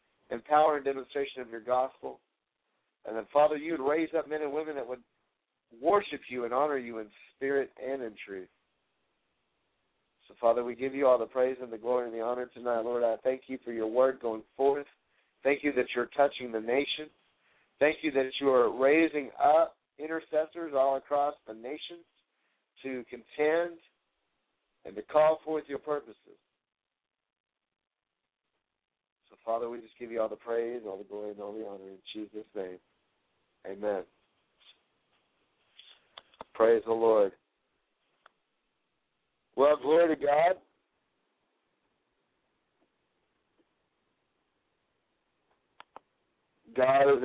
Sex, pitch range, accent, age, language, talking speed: male, 120-150 Hz, American, 60-79, English, 135 wpm